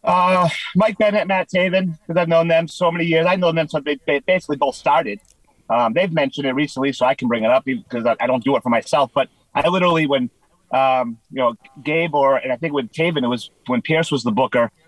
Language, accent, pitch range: English, American, 130-155 Hz